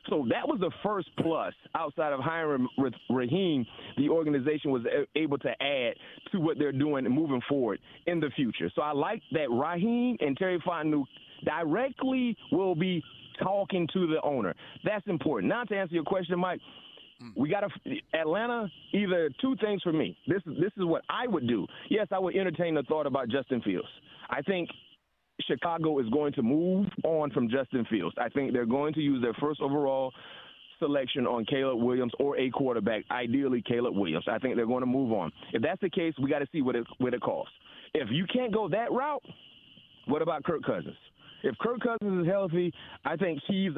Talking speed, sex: 195 wpm, male